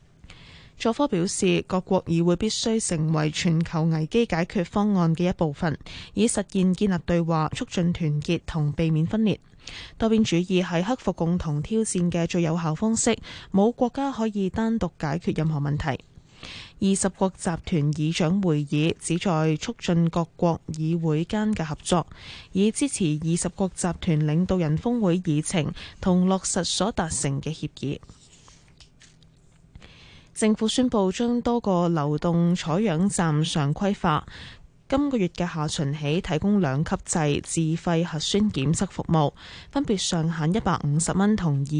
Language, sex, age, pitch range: Chinese, female, 10-29, 155-205 Hz